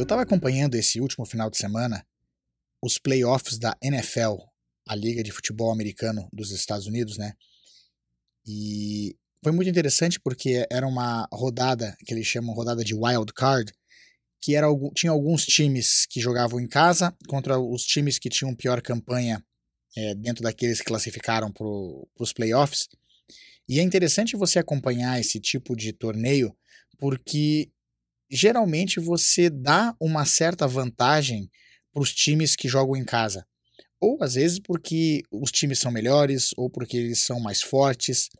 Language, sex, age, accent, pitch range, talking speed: Portuguese, male, 20-39, Brazilian, 115-145 Hz, 150 wpm